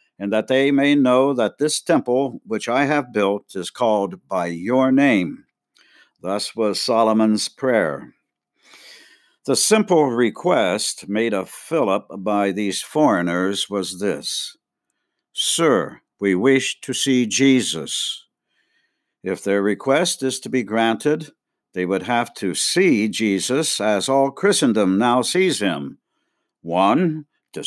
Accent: American